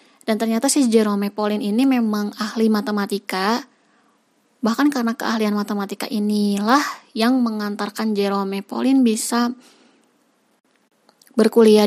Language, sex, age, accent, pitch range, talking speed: Indonesian, female, 20-39, native, 205-255 Hz, 100 wpm